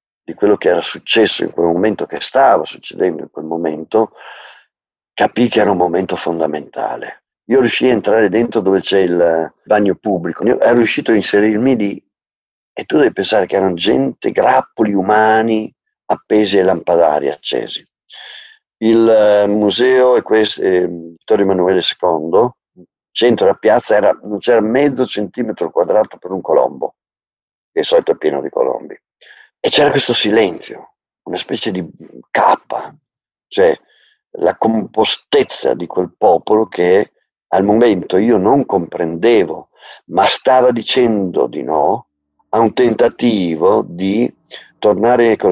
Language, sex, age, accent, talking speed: Italian, male, 50-69, native, 140 wpm